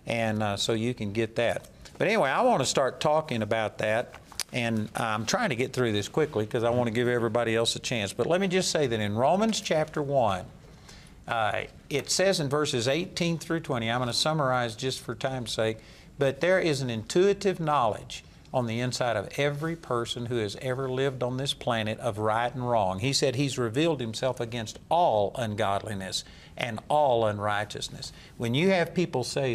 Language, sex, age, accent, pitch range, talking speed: English, male, 50-69, American, 115-150 Hz, 195 wpm